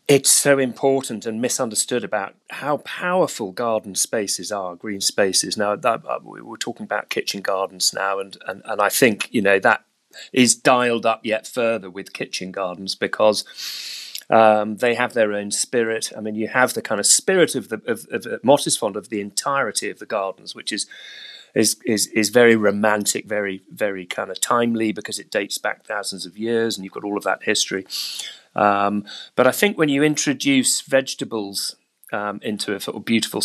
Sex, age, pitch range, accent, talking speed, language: male, 30-49, 105-145 Hz, British, 190 wpm, English